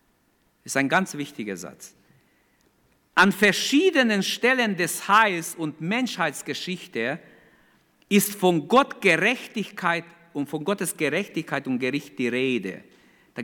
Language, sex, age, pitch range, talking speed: German, male, 50-69, 175-255 Hz, 115 wpm